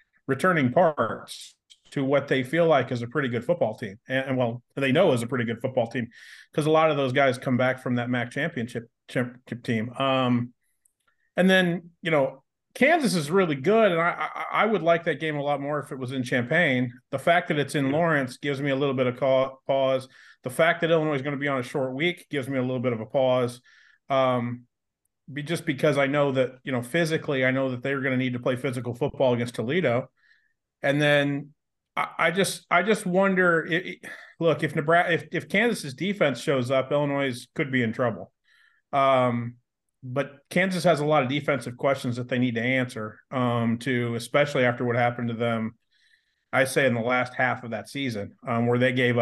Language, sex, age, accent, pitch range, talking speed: English, male, 30-49, American, 120-150 Hz, 215 wpm